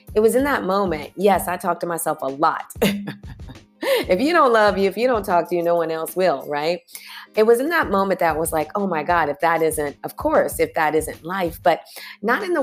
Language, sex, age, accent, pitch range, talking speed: English, female, 30-49, American, 155-195 Hz, 250 wpm